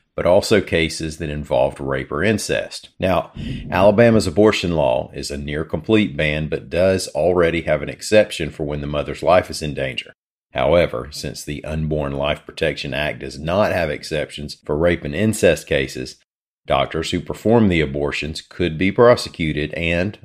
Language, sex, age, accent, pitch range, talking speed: English, male, 40-59, American, 75-90 Hz, 165 wpm